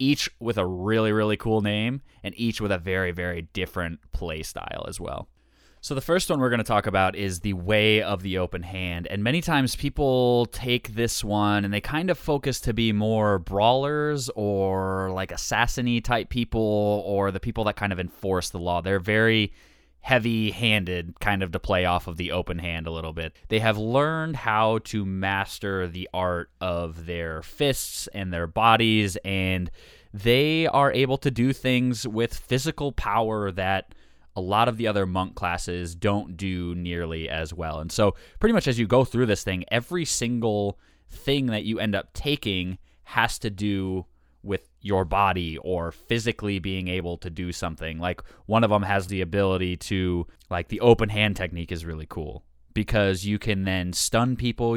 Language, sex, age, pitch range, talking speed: English, male, 20-39, 90-115 Hz, 185 wpm